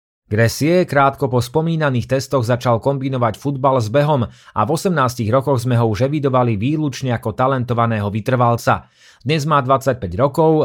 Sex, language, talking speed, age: male, Slovak, 140 wpm, 30-49